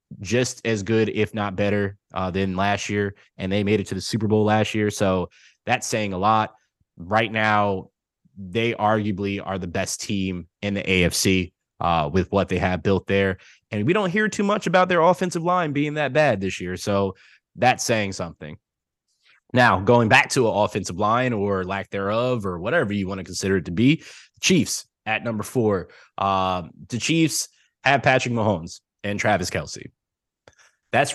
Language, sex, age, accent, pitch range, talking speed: English, male, 20-39, American, 95-115 Hz, 185 wpm